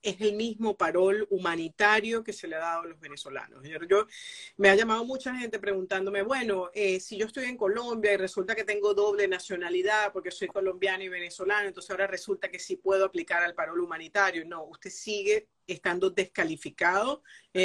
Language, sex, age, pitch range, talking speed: Spanish, female, 40-59, 185-220 Hz, 185 wpm